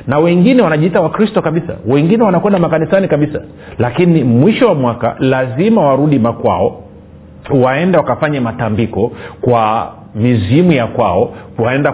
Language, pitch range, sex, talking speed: Swahili, 120-165 Hz, male, 120 wpm